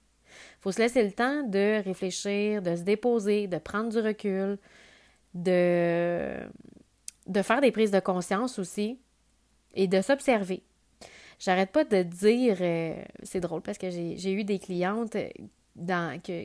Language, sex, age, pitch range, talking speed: French, female, 30-49, 180-225 Hz, 140 wpm